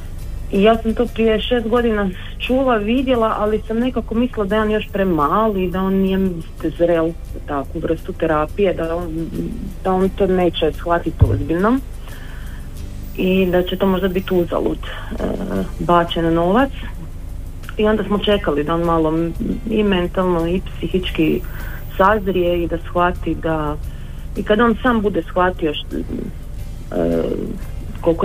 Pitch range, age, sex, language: 140-195 Hz, 30-49, female, Croatian